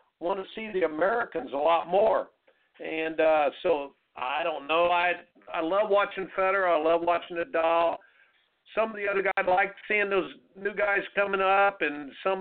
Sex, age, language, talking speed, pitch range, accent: male, 50-69, English, 180 wpm, 155-195 Hz, American